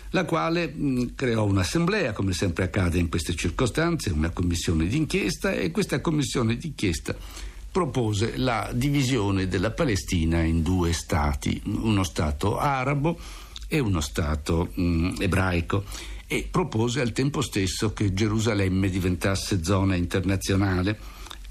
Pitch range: 90-140 Hz